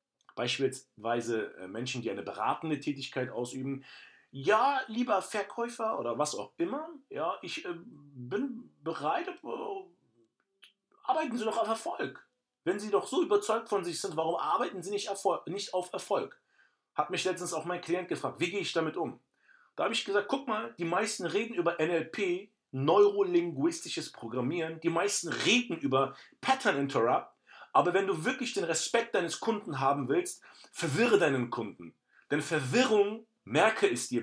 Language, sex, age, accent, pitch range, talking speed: German, male, 40-59, German, 165-250 Hz, 150 wpm